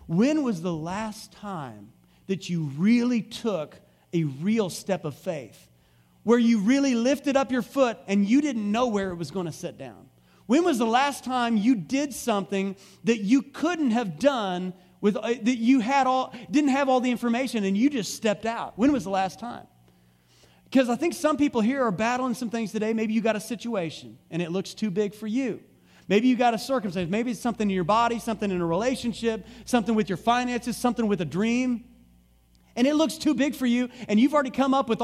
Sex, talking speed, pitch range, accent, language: male, 210 wpm, 185-250 Hz, American, English